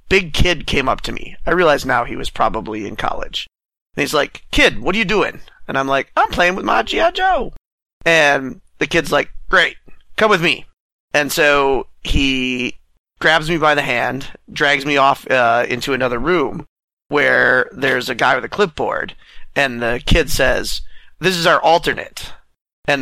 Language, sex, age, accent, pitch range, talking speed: English, male, 30-49, American, 130-155 Hz, 180 wpm